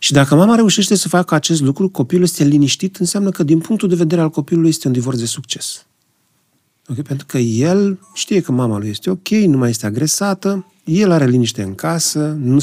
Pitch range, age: 120-175 Hz, 40-59